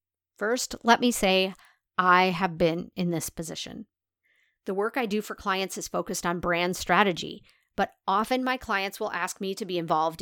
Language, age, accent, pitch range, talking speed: English, 40-59, American, 175-215 Hz, 180 wpm